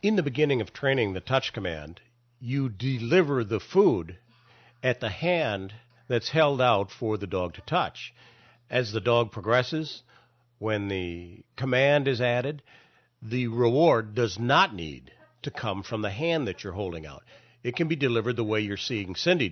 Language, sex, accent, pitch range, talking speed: English, male, American, 100-135 Hz, 170 wpm